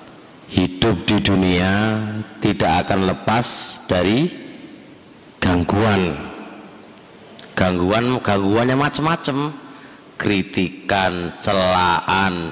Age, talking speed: 50-69, 60 wpm